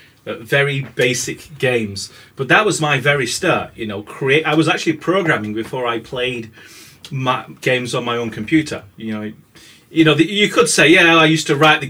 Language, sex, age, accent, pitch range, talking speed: English, male, 30-49, British, 120-160 Hz, 200 wpm